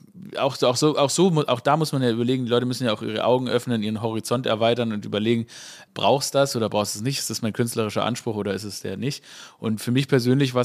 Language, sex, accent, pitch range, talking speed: German, male, German, 110-130 Hz, 270 wpm